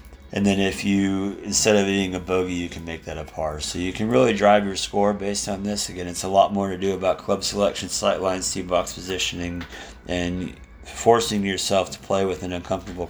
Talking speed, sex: 220 wpm, male